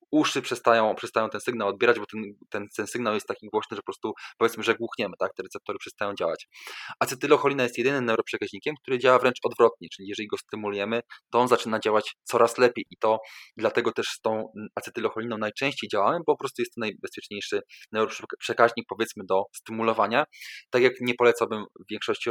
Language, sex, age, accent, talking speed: Polish, male, 20-39, native, 185 wpm